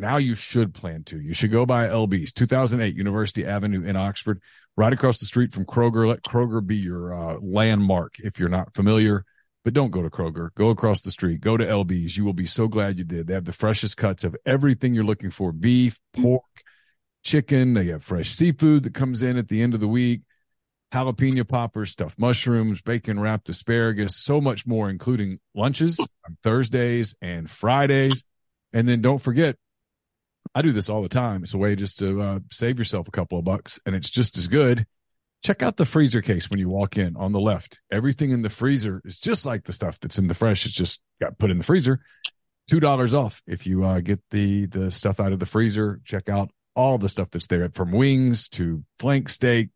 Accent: American